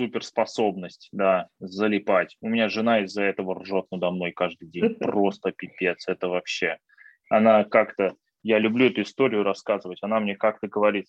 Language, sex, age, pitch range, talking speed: Russian, male, 20-39, 95-120 Hz, 150 wpm